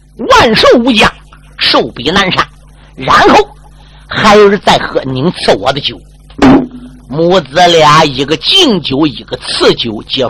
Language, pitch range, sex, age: Chinese, 140-200 Hz, male, 50-69